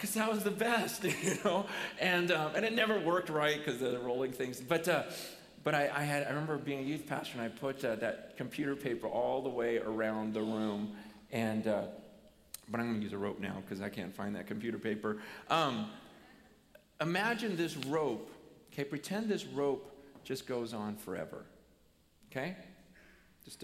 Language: English